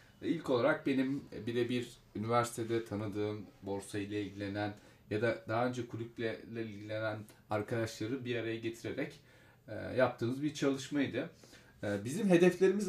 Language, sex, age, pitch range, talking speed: Turkish, male, 30-49, 110-140 Hz, 110 wpm